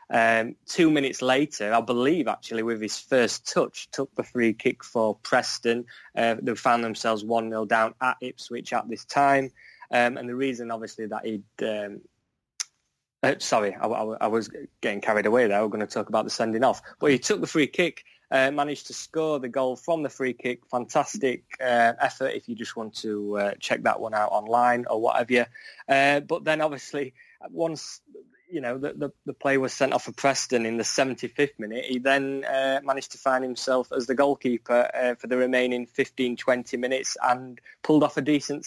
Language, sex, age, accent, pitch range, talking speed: English, male, 20-39, British, 115-135 Hz, 200 wpm